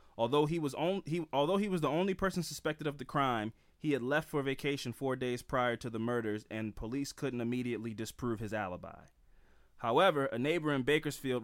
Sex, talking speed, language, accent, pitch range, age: male, 200 wpm, English, American, 115-145 Hz, 20-39